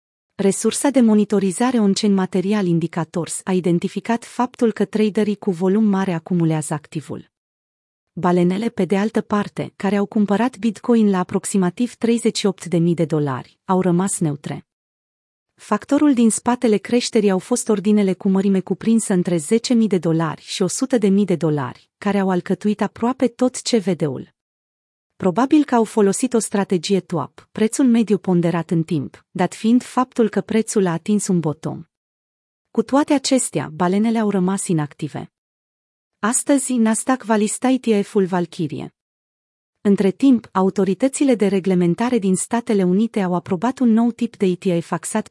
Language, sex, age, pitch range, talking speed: Romanian, female, 30-49, 175-220 Hz, 145 wpm